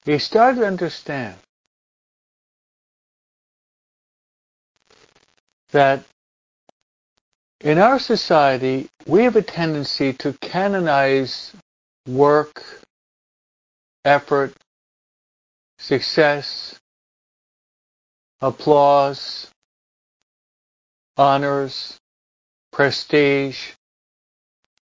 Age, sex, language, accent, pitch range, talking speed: 50-69, male, English, American, 130-165 Hz, 50 wpm